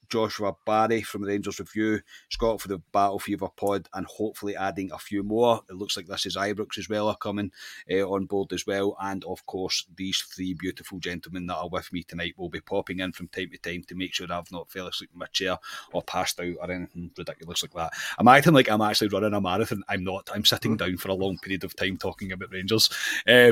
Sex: male